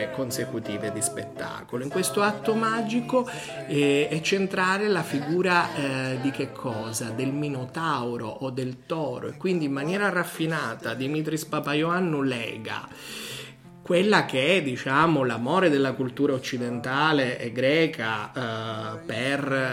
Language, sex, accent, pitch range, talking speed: Italian, male, native, 120-150 Hz, 115 wpm